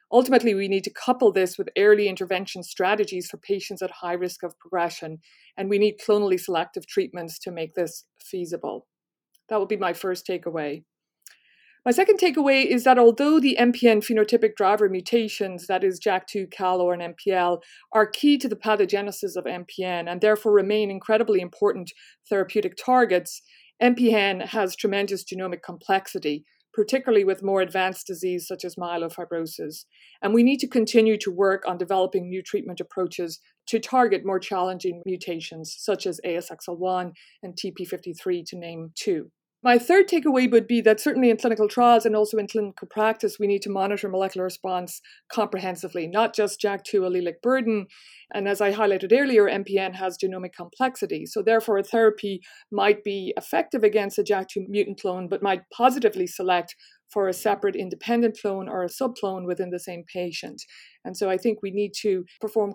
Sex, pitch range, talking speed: female, 180-220 Hz, 165 wpm